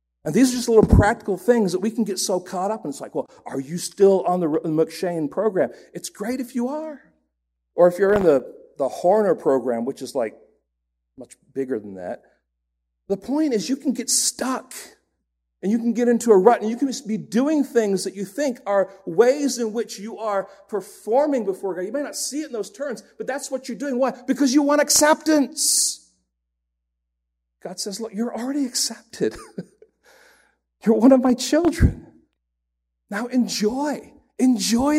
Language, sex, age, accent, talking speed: English, male, 40-59, American, 190 wpm